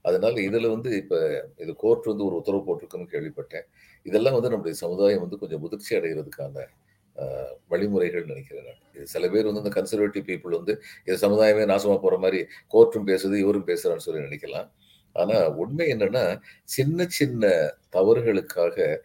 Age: 40-59